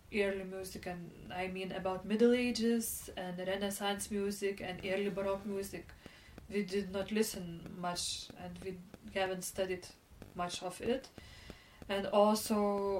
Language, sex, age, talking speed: English, female, 20-39, 135 wpm